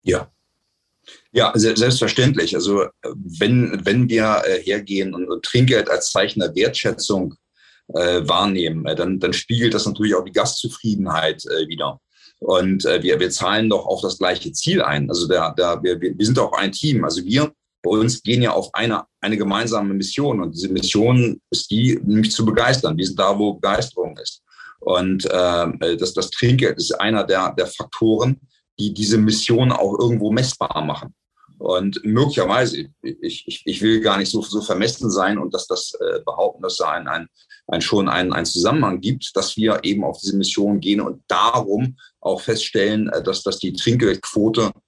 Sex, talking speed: male, 175 wpm